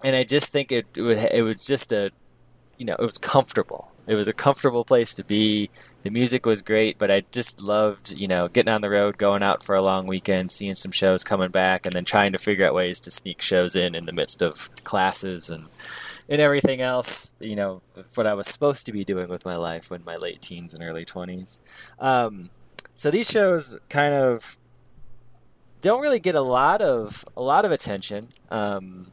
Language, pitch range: English, 95-120 Hz